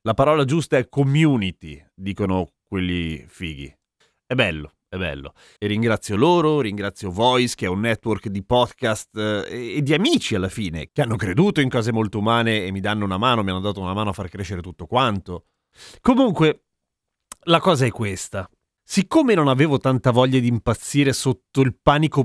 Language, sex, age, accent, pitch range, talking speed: Italian, male, 30-49, native, 105-160 Hz, 175 wpm